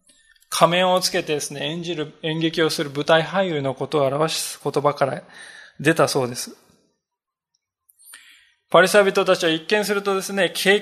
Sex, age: male, 20-39